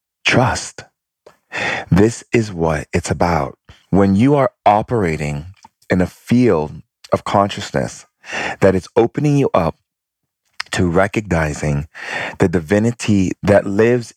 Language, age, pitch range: English, 40-59, 85-130 Hz